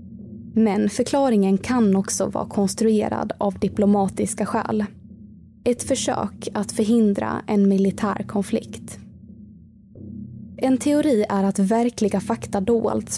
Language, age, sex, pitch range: Swedish, 20-39, female, 190-225 Hz